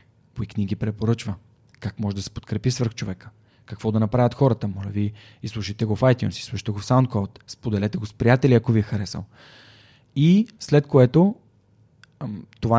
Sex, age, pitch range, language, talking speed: male, 20-39, 110-125 Hz, Bulgarian, 170 wpm